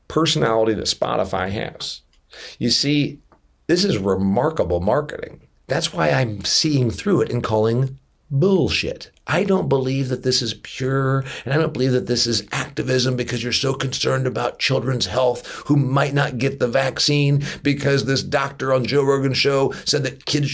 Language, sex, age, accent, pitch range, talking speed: English, male, 50-69, American, 125-155 Hz, 165 wpm